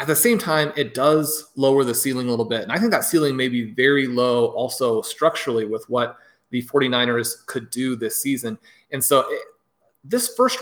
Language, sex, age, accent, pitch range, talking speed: English, male, 30-49, American, 125-155 Hz, 200 wpm